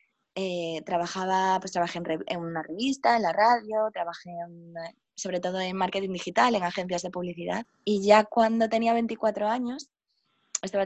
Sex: female